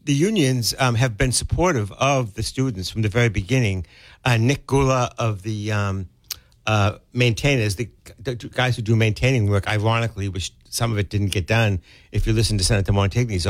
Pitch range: 100-125 Hz